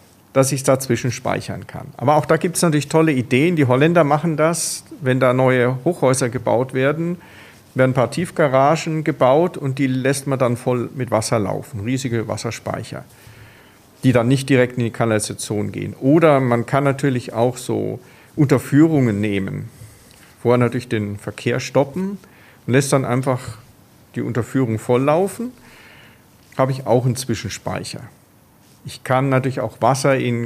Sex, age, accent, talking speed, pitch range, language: male, 40-59, German, 160 wpm, 115-140 Hz, German